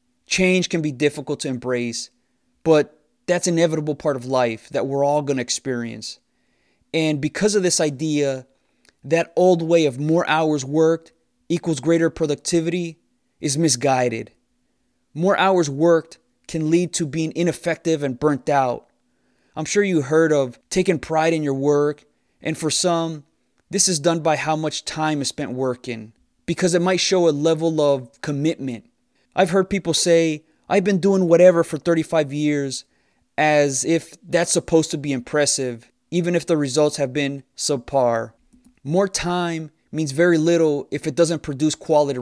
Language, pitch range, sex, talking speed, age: English, 140-170 Hz, male, 160 wpm, 20-39